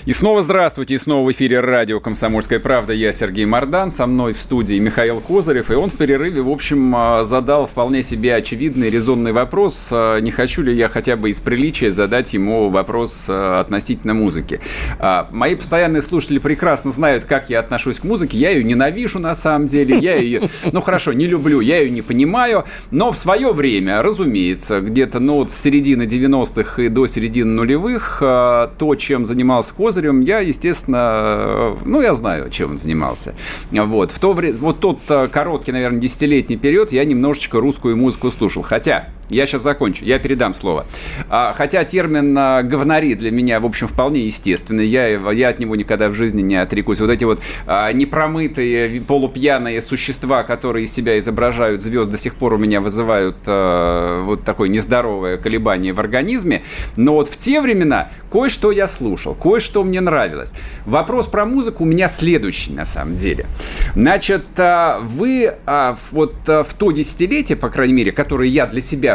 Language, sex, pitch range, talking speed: Russian, male, 110-150 Hz, 165 wpm